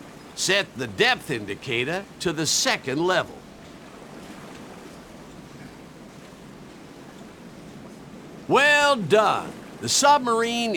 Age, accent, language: 60-79, American, Chinese